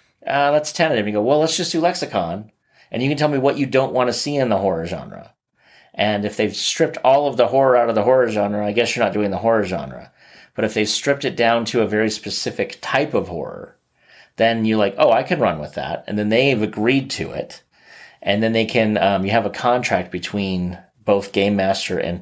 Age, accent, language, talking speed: 30-49, American, English, 245 wpm